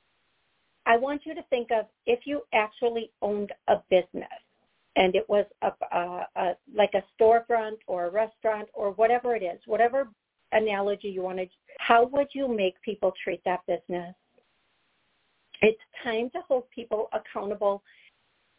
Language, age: English, 50-69